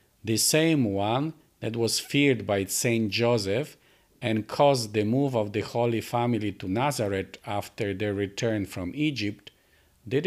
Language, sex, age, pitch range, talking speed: English, male, 50-69, 100-135 Hz, 145 wpm